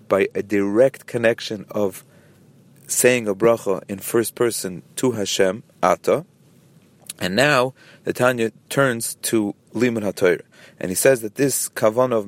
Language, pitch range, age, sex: English, 105-125 Hz, 30-49, male